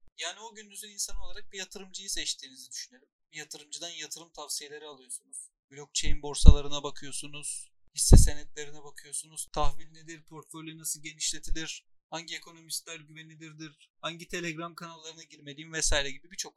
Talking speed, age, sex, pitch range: 125 wpm, 40-59, male, 145-175 Hz